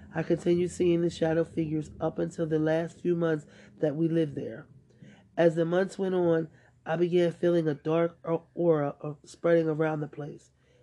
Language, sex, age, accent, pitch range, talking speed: English, male, 30-49, American, 160-175 Hz, 170 wpm